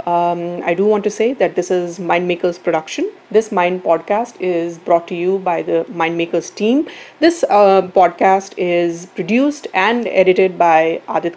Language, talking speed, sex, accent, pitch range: English, 165 wpm, female, Indian, 170-220 Hz